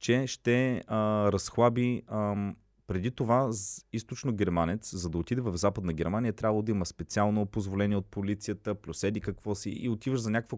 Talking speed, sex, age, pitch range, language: 170 wpm, male, 30-49, 95-125 Hz, Bulgarian